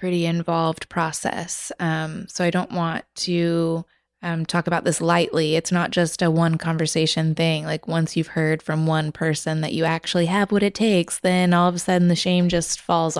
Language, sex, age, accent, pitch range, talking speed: English, female, 20-39, American, 165-185 Hz, 200 wpm